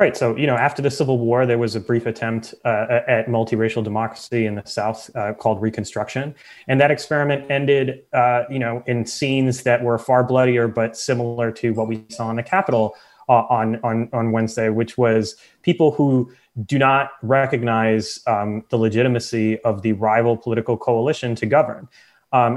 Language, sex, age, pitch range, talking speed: English, male, 30-49, 110-125 Hz, 180 wpm